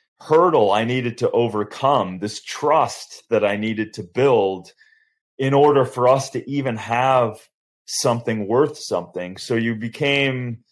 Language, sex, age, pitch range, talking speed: English, male, 30-49, 105-145 Hz, 140 wpm